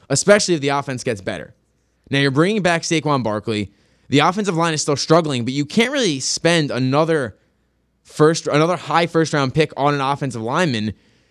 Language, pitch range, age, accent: English, 125-165 Hz, 20-39, American